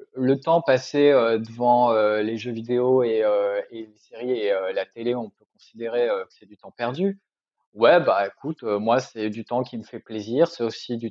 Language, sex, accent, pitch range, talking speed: French, male, French, 120-145 Hz, 225 wpm